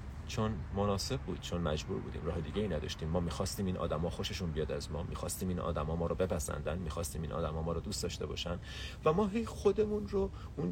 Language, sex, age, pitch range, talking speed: Persian, male, 40-59, 80-105 Hz, 215 wpm